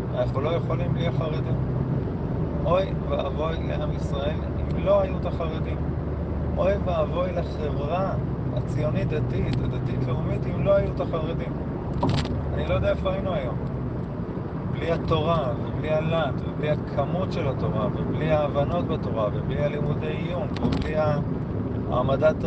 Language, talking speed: Hebrew, 125 wpm